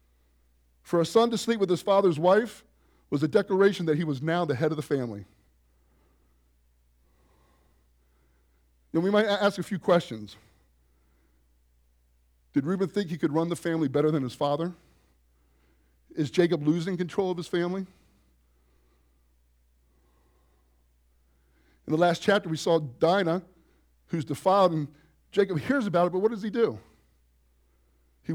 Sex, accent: male, American